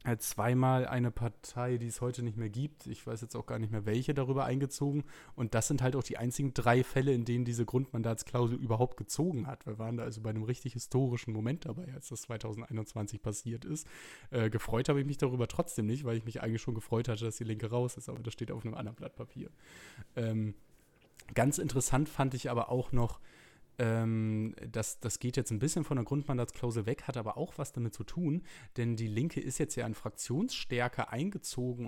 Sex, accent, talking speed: male, German, 215 wpm